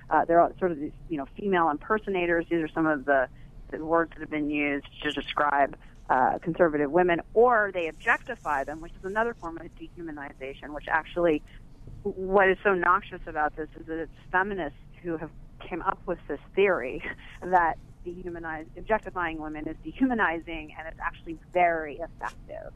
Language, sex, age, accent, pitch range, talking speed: English, female, 40-59, American, 145-175 Hz, 165 wpm